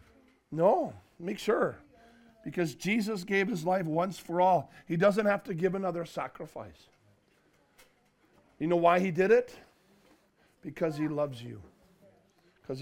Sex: male